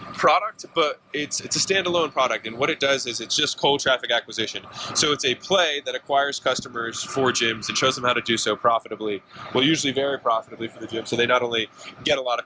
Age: 20-39